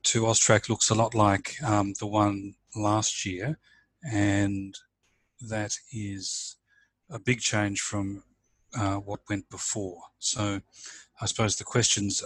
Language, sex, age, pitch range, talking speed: English, male, 30-49, 100-110 Hz, 130 wpm